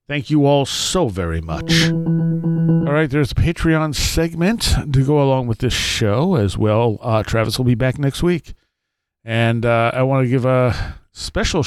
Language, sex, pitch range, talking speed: English, male, 110-145 Hz, 180 wpm